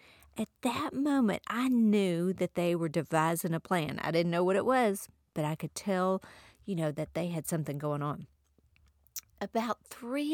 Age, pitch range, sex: 50-69, 165-230 Hz, female